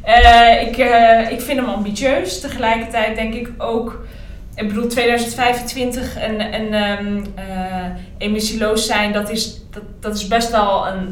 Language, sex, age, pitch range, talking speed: Dutch, female, 20-39, 185-225 Hz, 135 wpm